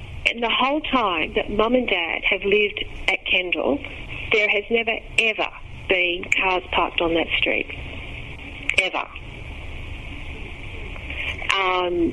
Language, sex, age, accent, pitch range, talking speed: English, female, 40-59, Australian, 175-255 Hz, 120 wpm